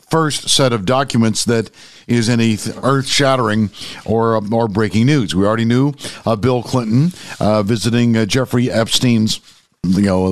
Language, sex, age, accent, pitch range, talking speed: English, male, 50-69, American, 110-140 Hz, 145 wpm